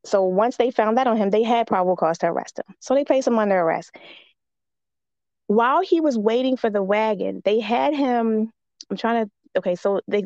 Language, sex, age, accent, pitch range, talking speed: English, female, 20-39, American, 190-230 Hz, 210 wpm